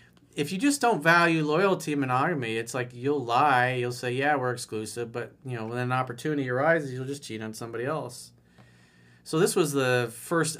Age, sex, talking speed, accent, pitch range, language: 40-59, male, 195 wpm, American, 100-165 Hz, English